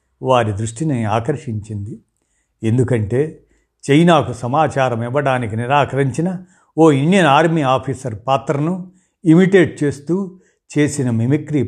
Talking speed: 85 wpm